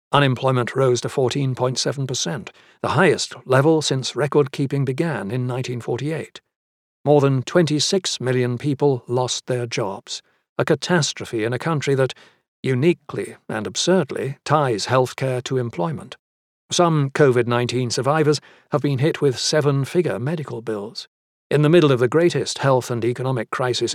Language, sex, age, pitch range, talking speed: English, male, 60-79, 125-150 Hz, 135 wpm